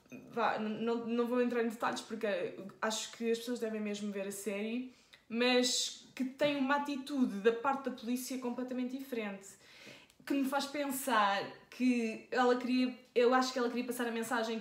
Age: 20-39